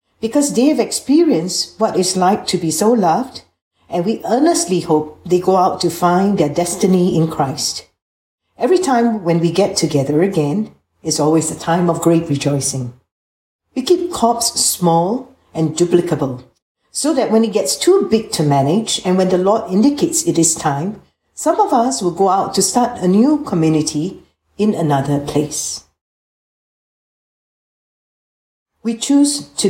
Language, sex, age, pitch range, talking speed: English, female, 60-79, 155-220 Hz, 160 wpm